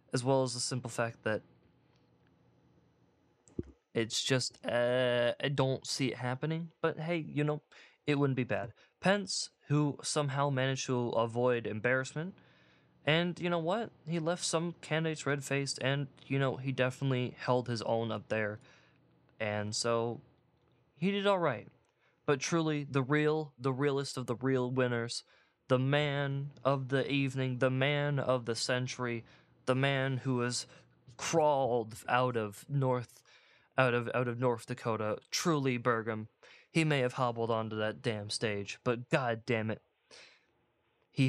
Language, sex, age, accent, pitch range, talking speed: English, male, 20-39, American, 115-140 Hz, 150 wpm